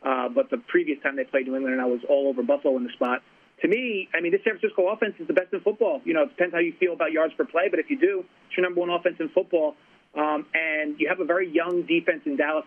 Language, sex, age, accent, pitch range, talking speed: English, male, 30-49, American, 145-200 Hz, 295 wpm